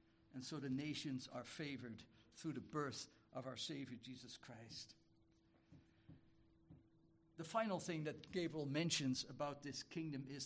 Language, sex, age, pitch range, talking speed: English, male, 60-79, 120-155 Hz, 140 wpm